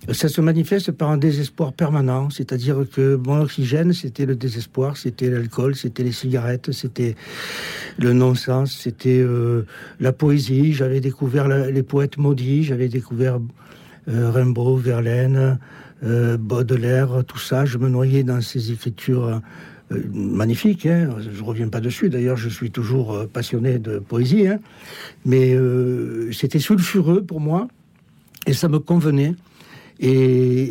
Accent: French